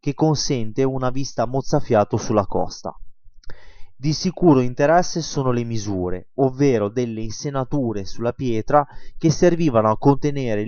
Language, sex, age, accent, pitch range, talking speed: Italian, male, 20-39, native, 110-150 Hz, 125 wpm